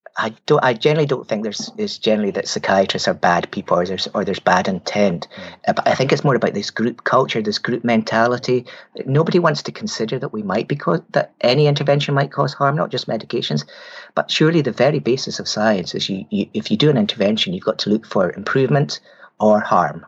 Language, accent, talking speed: English, British, 220 wpm